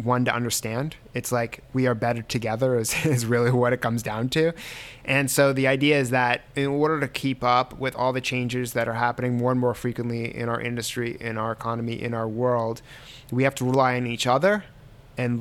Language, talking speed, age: English, 220 wpm, 20-39